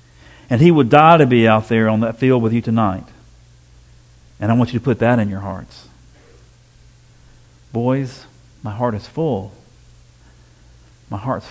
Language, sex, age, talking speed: English, male, 50-69, 160 wpm